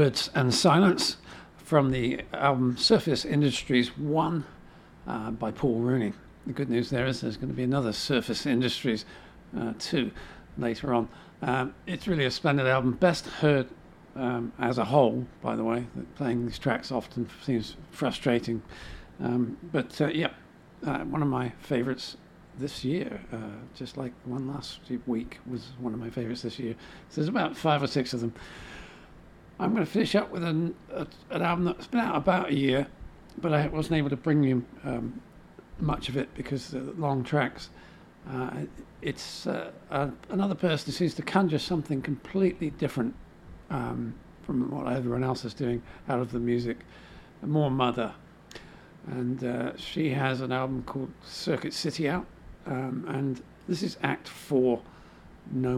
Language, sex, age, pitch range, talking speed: English, male, 50-69, 120-150 Hz, 170 wpm